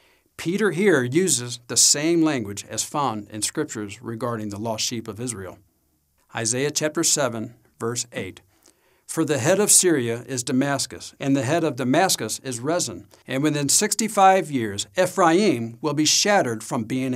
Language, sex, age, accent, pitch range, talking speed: English, male, 60-79, American, 110-160 Hz, 155 wpm